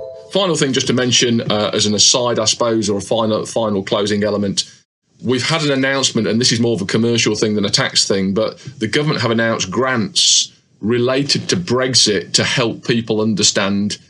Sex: male